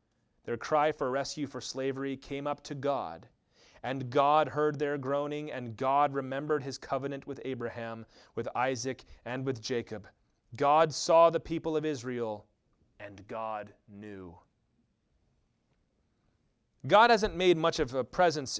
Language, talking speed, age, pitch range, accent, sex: English, 140 wpm, 30-49, 115-145 Hz, American, male